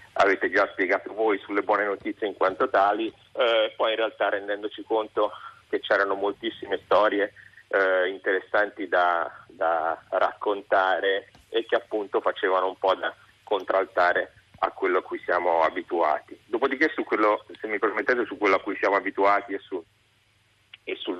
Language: Italian